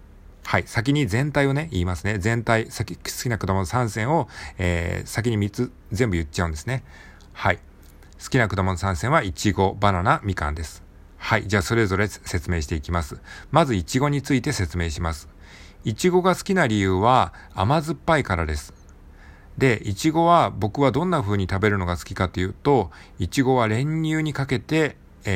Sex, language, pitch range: male, Japanese, 85-125 Hz